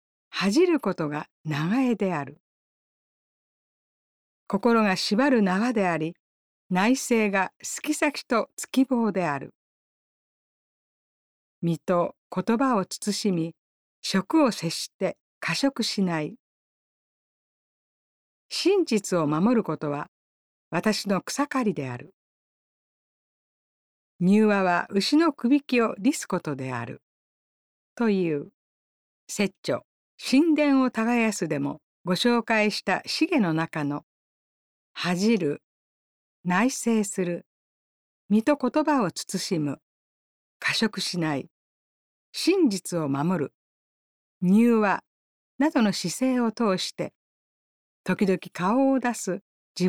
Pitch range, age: 175-245 Hz, 50-69